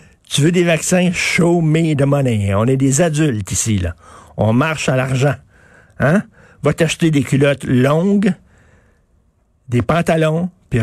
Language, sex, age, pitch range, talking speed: French, male, 60-79, 125-180 Hz, 145 wpm